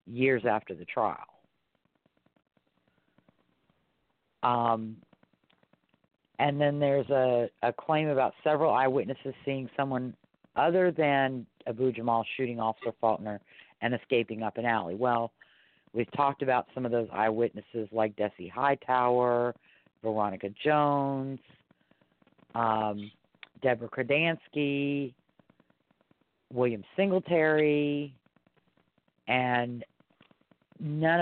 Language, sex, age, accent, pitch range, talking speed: English, female, 40-59, American, 115-140 Hz, 90 wpm